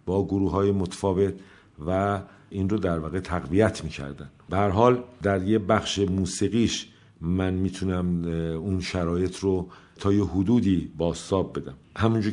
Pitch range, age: 85-100 Hz, 50-69